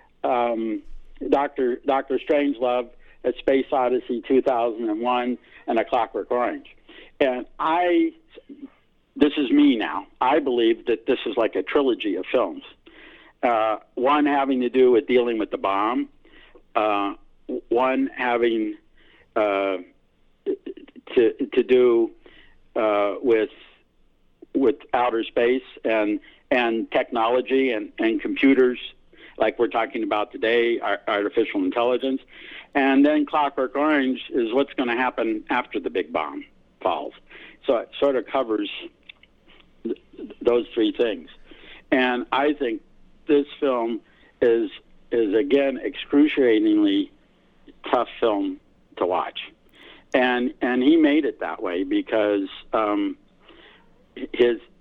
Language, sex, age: English, male, 60-79